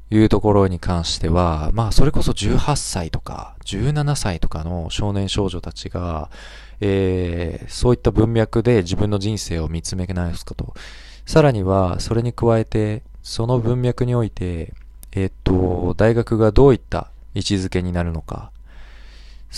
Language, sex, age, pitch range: Japanese, male, 20-39, 85-115 Hz